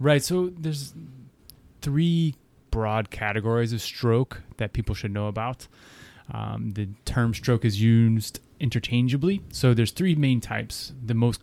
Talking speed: 140 wpm